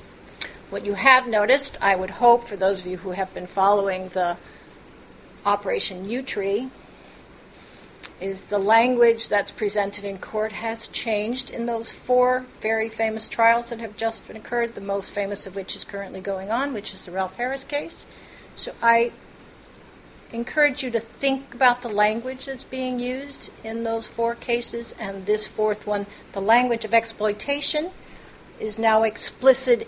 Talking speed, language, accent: 160 wpm, English, American